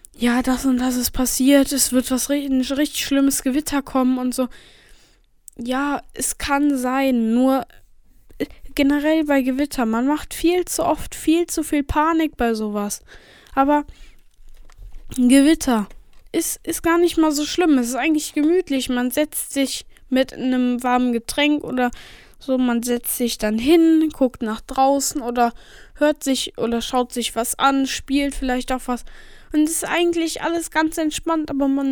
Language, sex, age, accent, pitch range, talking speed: German, female, 10-29, German, 235-295 Hz, 160 wpm